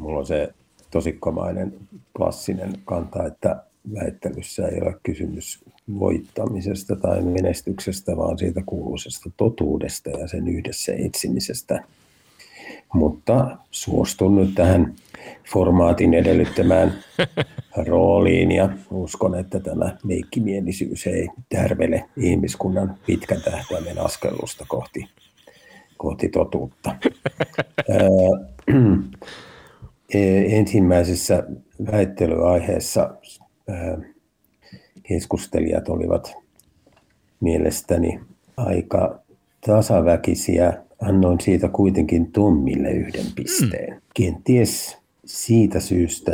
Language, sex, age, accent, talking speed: Finnish, male, 50-69, native, 80 wpm